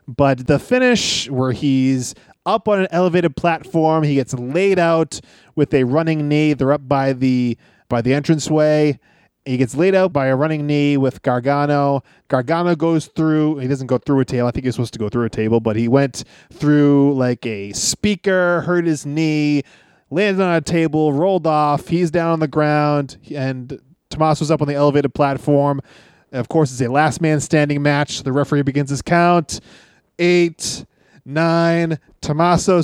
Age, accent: 20-39, American